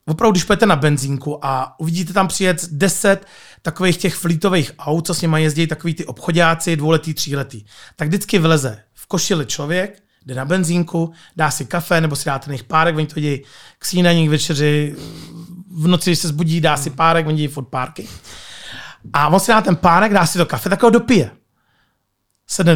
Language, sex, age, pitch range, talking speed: Czech, male, 30-49, 150-190 Hz, 190 wpm